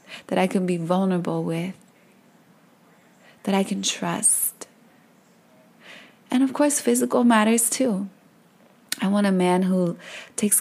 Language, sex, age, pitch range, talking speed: English, female, 20-39, 185-225 Hz, 125 wpm